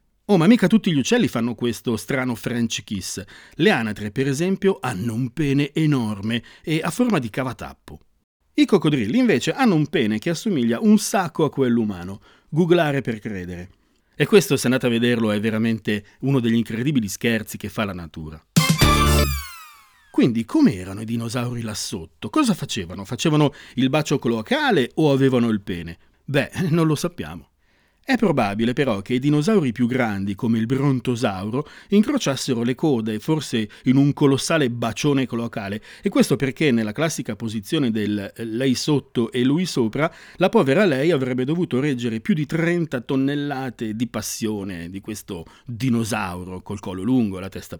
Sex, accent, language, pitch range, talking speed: male, native, Italian, 110-150 Hz, 165 wpm